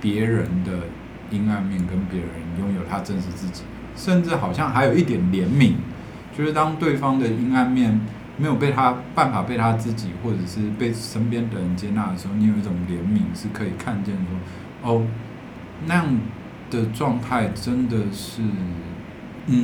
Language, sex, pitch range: Chinese, male, 95-125 Hz